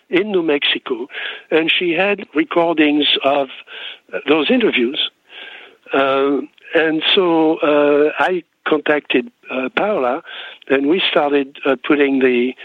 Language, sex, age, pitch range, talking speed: English, male, 60-79, 130-170 Hz, 115 wpm